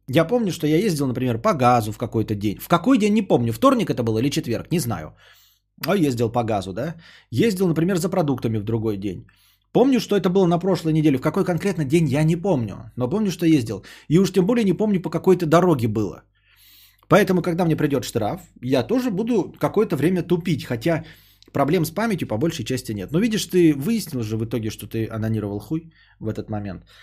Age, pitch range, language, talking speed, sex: 20-39, 115-165 Hz, Bulgarian, 215 wpm, male